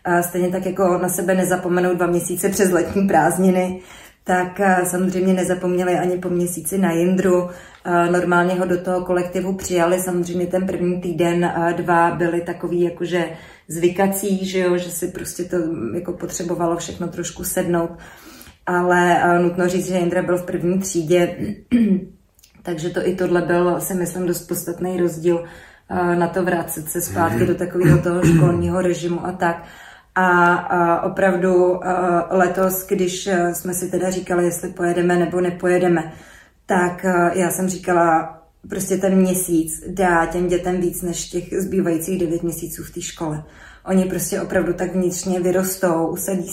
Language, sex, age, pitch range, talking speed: Czech, female, 30-49, 175-185 Hz, 150 wpm